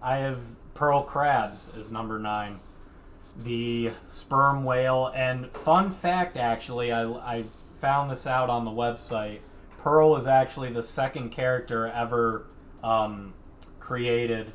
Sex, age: male, 20-39